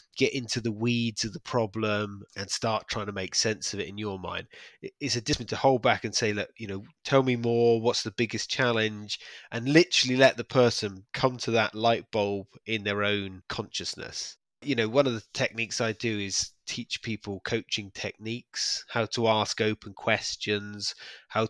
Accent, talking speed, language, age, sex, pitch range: British, 195 wpm, English, 20-39, male, 110-135 Hz